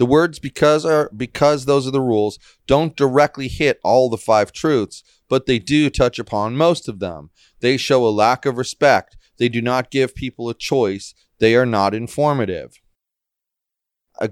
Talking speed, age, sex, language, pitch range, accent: 175 wpm, 30-49, male, English, 105-140 Hz, American